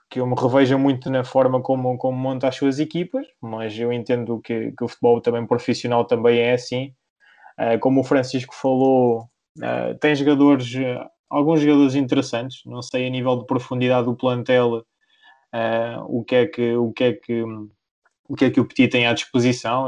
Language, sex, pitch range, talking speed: Portuguese, male, 120-135 Hz, 185 wpm